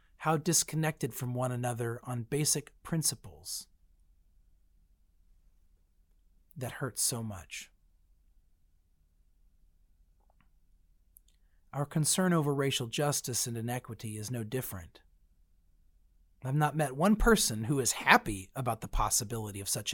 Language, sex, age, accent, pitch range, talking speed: English, male, 40-59, American, 80-130 Hz, 110 wpm